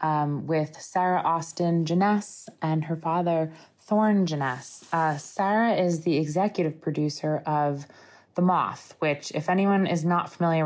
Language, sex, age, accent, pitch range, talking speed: English, female, 20-39, American, 145-170 Hz, 140 wpm